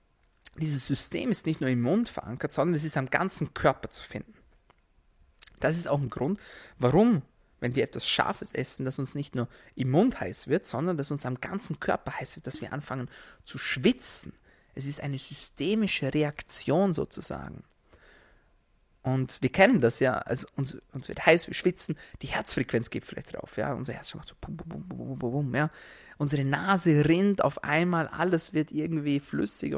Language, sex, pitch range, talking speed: German, male, 130-165 Hz, 185 wpm